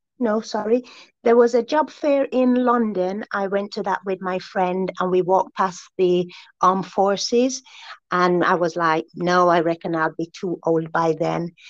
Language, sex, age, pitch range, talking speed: English, female, 30-49, 165-230 Hz, 185 wpm